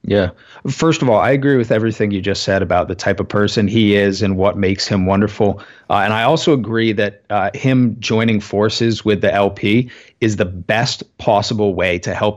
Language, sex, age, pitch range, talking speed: English, male, 30-49, 100-120 Hz, 210 wpm